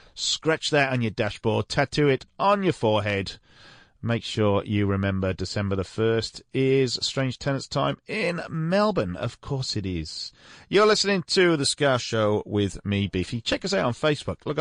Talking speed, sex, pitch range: 175 wpm, male, 100-140 Hz